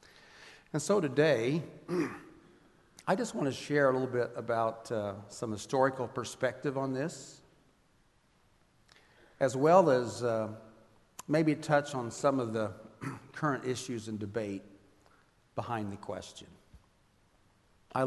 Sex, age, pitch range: male, 50-69, 105-135 Hz